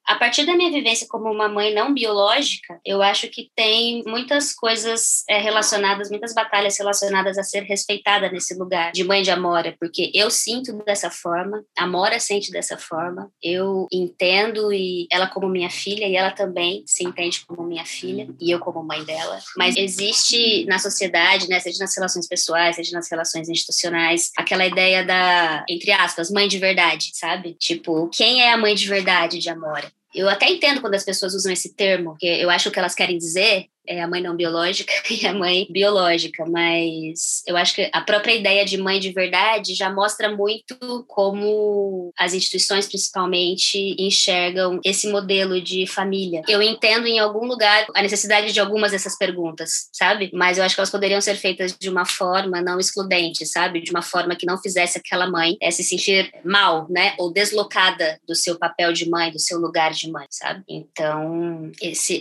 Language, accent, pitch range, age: Portuguese, Brazilian, 175-205 Hz, 20-39